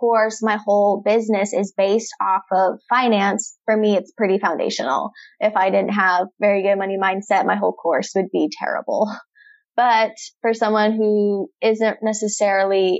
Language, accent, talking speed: English, American, 155 wpm